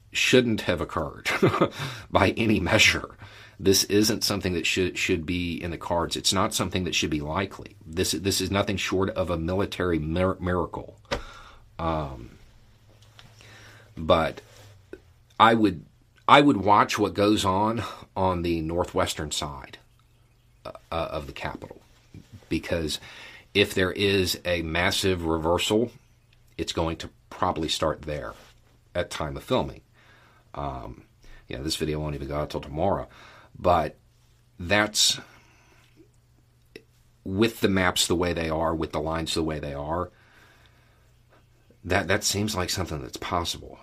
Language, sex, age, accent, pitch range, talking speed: English, male, 40-59, American, 80-110 Hz, 140 wpm